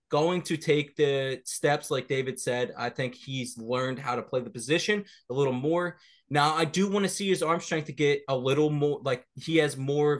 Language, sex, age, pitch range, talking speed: English, male, 20-39, 125-155 Hz, 225 wpm